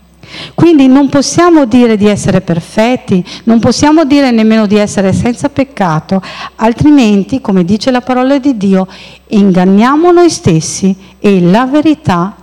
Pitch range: 185-260 Hz